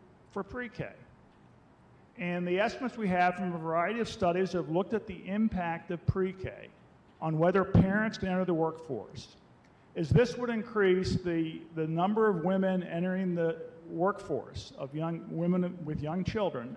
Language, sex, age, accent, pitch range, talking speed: English, male, 50-69, American, 165-205 Hz, 155 wpm